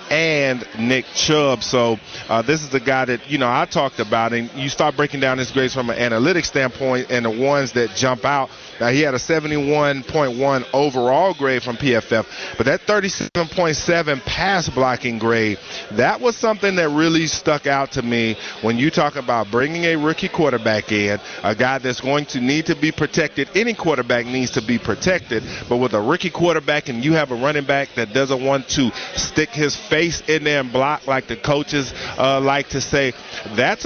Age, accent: 40-59, American